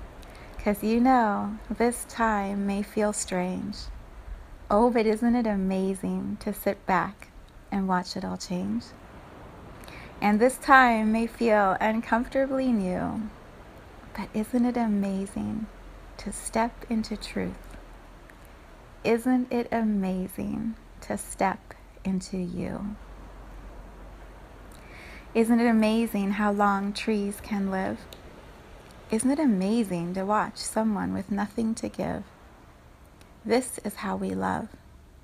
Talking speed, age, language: 110 wpm, 30-49, English